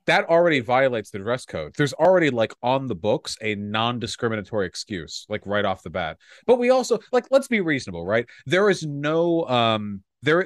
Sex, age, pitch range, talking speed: male, 30-49, 110-175 Hz, 195 wpm